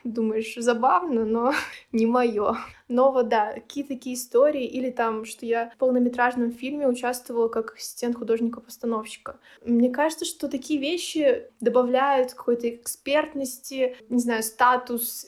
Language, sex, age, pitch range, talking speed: Russian, female, 20-39, 230-260 Hz, 130 wpm